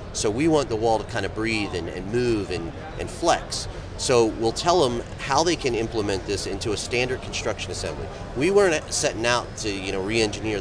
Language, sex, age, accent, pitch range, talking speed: English, male, 30-49, American, 105-140 Hz, 200 wpm